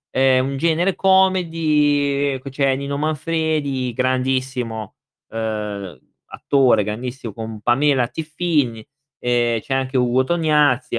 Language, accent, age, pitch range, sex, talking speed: Italian, native, 20-39, 115-155 Hz, male, 100 wpm